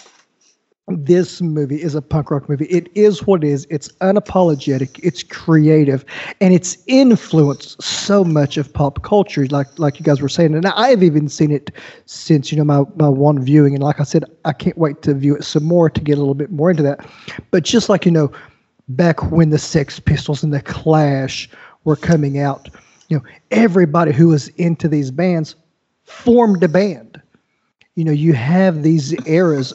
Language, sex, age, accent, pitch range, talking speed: English, male, 40-59, American, 145-175 Hz, 195 wpm